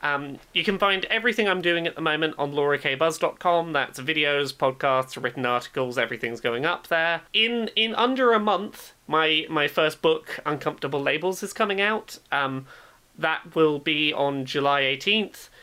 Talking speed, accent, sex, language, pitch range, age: 160 wpm, British, male, English, 140-190 Hz, 30-49